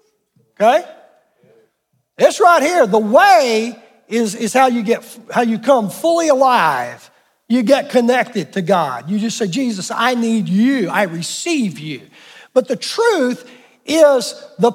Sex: male